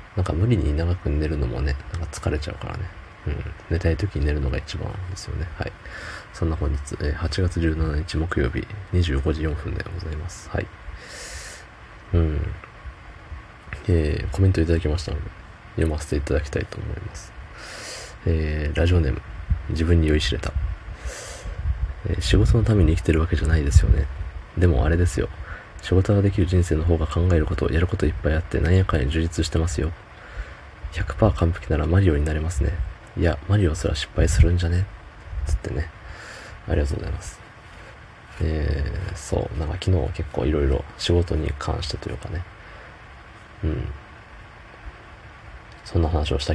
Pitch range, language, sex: 80-100 Hz, Japanese, male